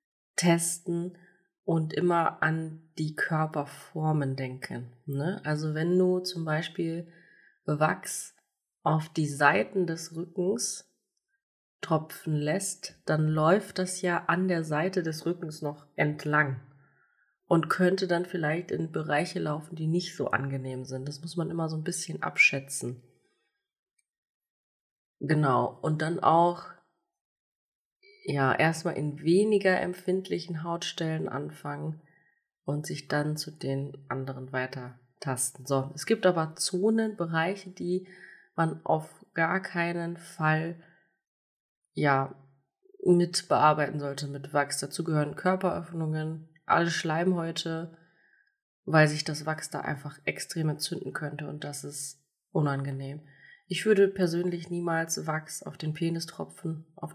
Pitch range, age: 150-175 Hz, 30-49